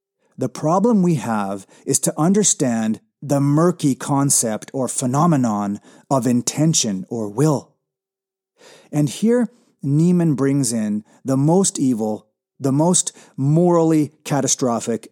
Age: 30-49